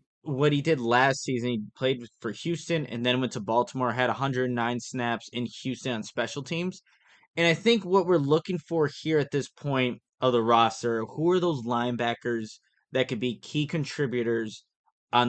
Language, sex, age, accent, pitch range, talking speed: English, male, 20-39, American, 120-150 Hz, 180 wpm